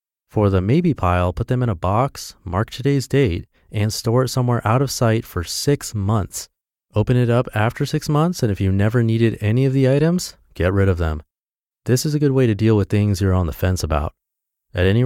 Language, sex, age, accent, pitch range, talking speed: English, male, 30-49, American, 95-130 Hz, 225 wpm